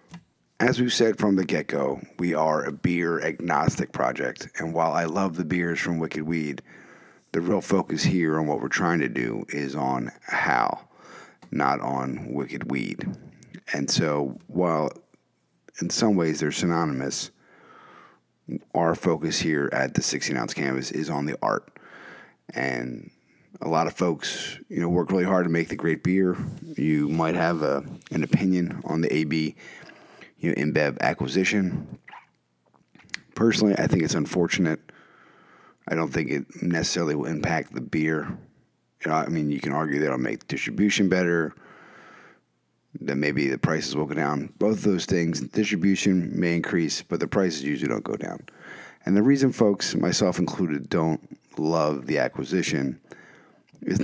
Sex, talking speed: male, 160 wpm